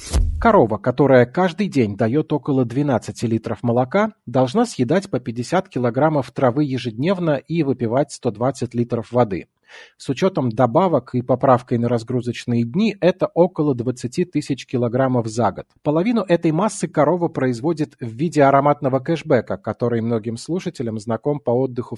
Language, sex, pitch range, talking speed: Russian, male, 120-155 Hz, 140 wpm